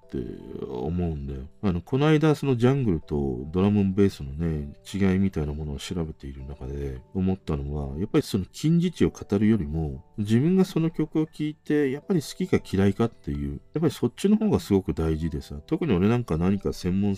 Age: 40-59